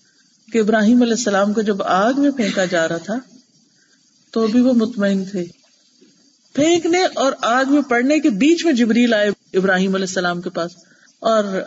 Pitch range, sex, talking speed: 210-275 Hz, female, 170 wpm